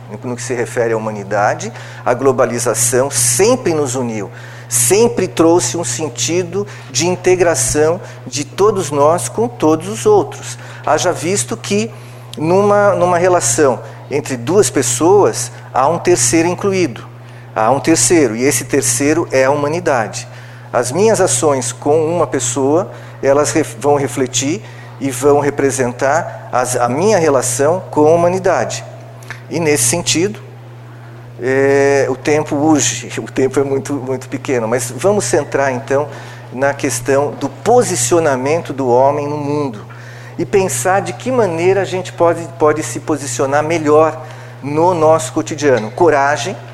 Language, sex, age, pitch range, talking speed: Portuguese, male, 40-59, 120-155 Hz, 130 wpm